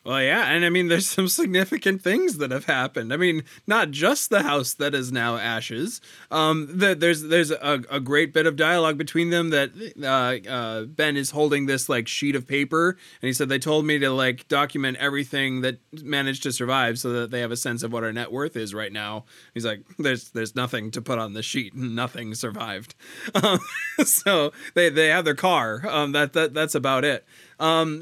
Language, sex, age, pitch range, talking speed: English, male, 20-39, 125-160 Hz, 210 wpm